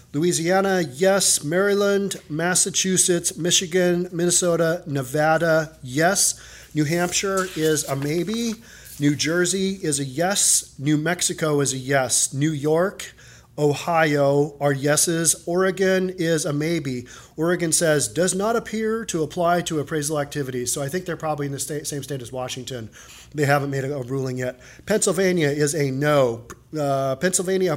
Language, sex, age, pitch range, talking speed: English, male, 40-59, 140-175 Hz, 145 wpm